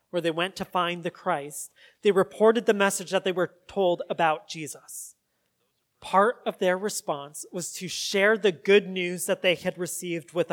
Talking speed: 180 wpm